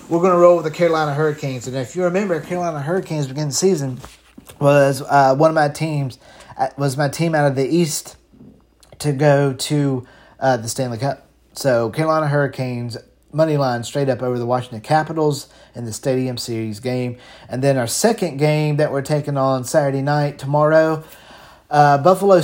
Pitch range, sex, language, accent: 130-170 Hz, male, English, American